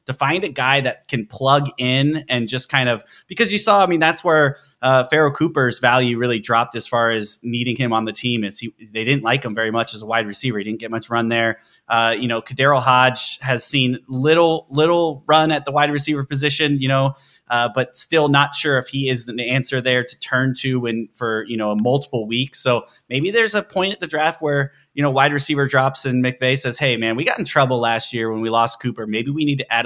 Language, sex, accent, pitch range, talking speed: English, male, American, 120-150 Hz, 245 wpm